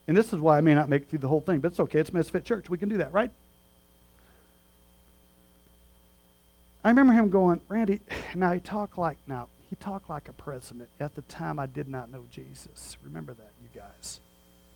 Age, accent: 50-69, American